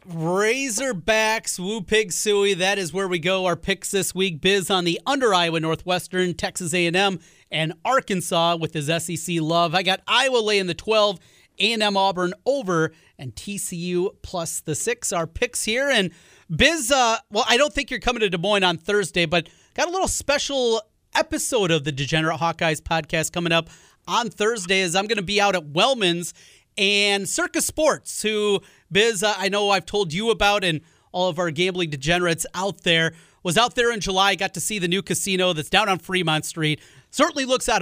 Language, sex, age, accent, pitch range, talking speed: English, male, 30-49, American, 170-210 Hz, 190 wpm